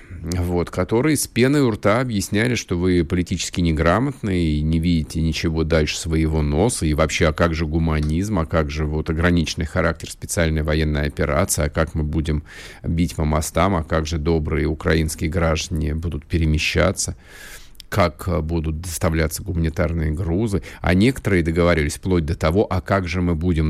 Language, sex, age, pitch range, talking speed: Russian, male, 50-69, 80-100 Hz, 160 wpm